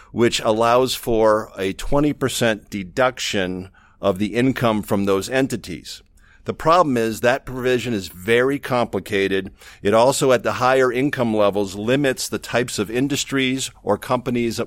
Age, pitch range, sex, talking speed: 50-69, 100-125 Hz, male, 140 wpm